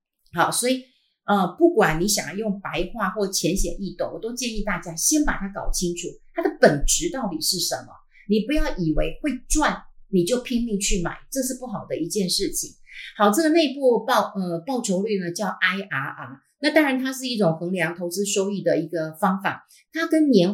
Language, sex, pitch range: Chinese, female, 175-250 Hz